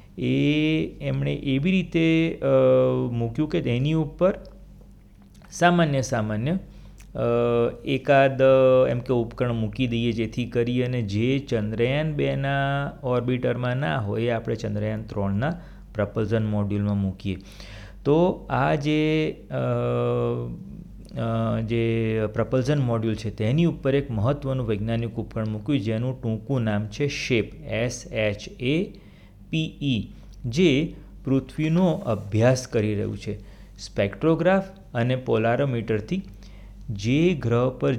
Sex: male